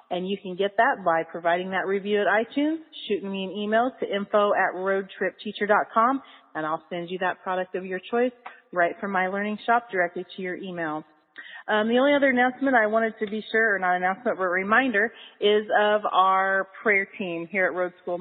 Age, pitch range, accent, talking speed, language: 30-49, 175-215 Hz, American, 205 wpm, English